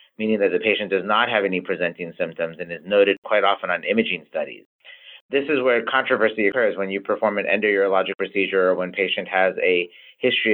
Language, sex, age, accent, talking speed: English, male, 30-49, American, 200 wpm